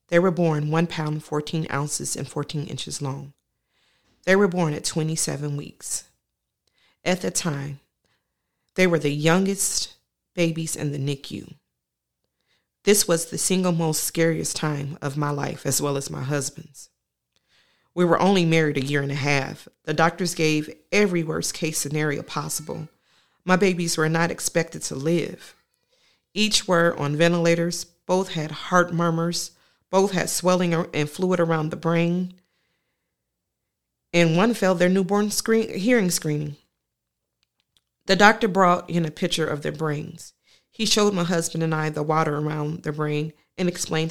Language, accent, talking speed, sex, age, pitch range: English, American, 150 wpm, female, 40-59, 150-180 Hz